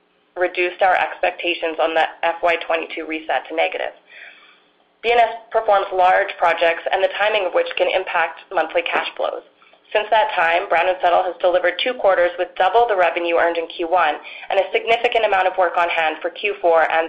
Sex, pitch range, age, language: female, 170-205 Hz, 30-49, English